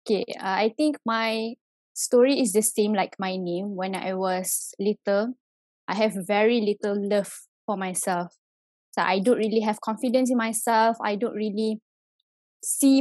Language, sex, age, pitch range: English, female, 10-29, 200-235 Hz